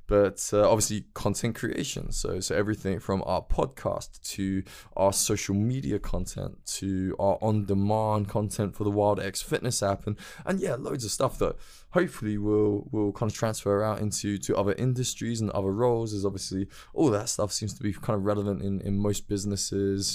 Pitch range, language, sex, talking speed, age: 100-115 Hz, English, male, 190 wpm, 20-39